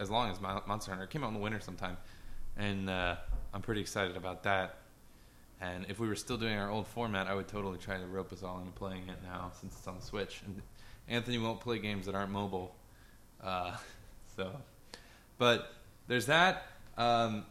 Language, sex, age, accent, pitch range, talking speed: English, male, 20-39, American, 95-120 Hz, 200 wpm